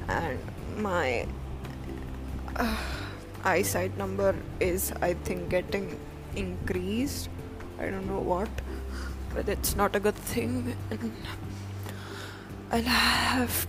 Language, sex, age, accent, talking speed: English, female, 10-29, Indian, 100 wpm